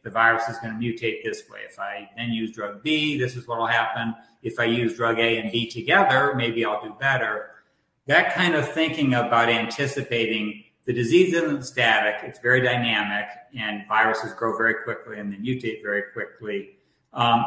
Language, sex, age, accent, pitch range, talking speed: English, male, 50-69, American, 110-130 Hz, 185 wpm